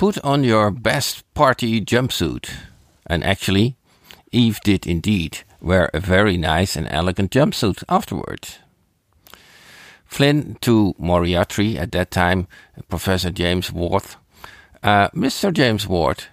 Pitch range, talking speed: 85-110 Hz, 120 wpm